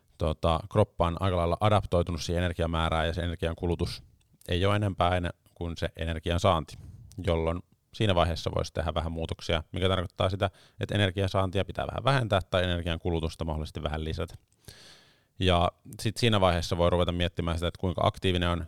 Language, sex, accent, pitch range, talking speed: Finnish, male, native, 80-100 Hz, 170 wpm